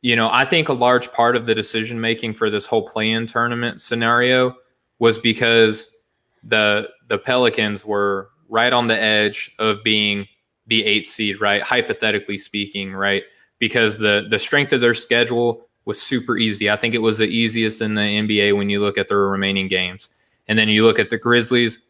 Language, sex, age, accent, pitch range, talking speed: English, male, 20-39, American, 105-120 Hz, 190 wpm